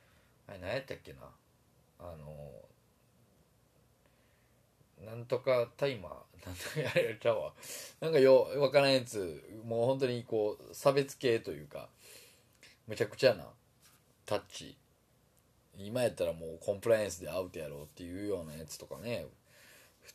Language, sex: Japanese, male